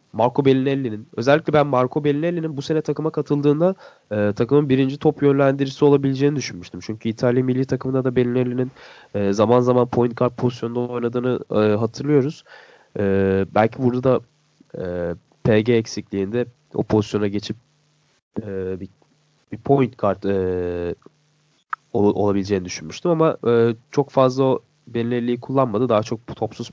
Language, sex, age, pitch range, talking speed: Turkish, male, 30-49, 105-150 Hz, 130 wpm